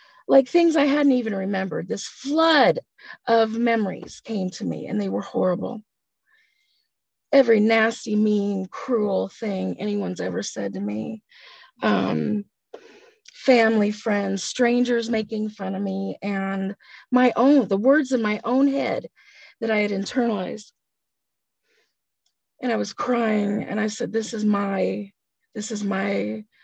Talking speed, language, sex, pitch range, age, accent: 135 wpm, English, female, 195-250 Hz, 30-49, American